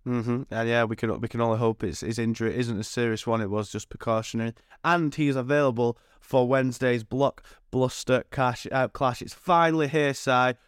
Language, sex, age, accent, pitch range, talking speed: English, male, 20-39, British, 110-125 Hz, 195 wpm